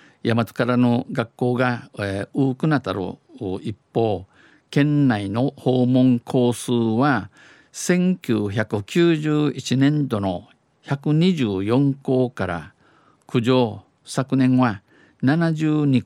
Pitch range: 105-130 Hz